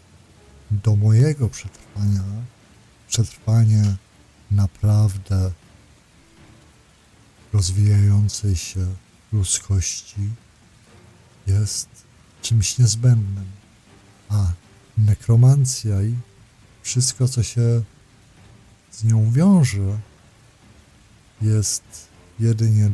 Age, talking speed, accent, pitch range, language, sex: 50-69, 60 wpm, native, 100-115 Hz, Polish, male